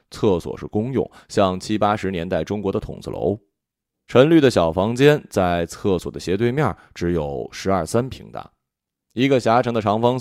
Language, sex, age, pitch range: Chinese, male, 20-39, 95-130 Hz